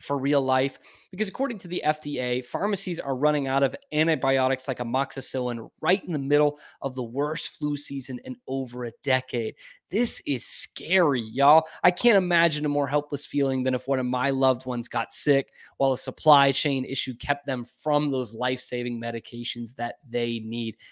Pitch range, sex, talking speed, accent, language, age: 125-150 Hz, male, 180 wpm, American, English, 20-39